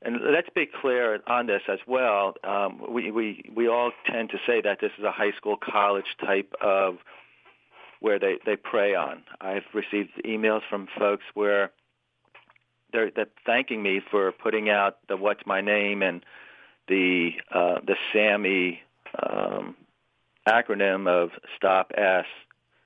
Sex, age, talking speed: male, 40-59, 150 wpm